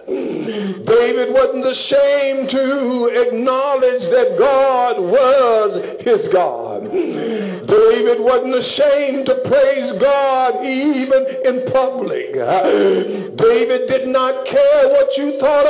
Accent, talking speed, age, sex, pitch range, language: American, 100 wpm, 60-79, male, 270-410 Hz, English